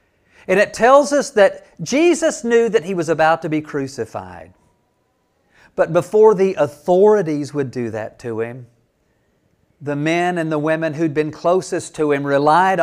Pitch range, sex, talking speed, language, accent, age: 130-180 Hz, male, 160 wpm, English, American, 50-69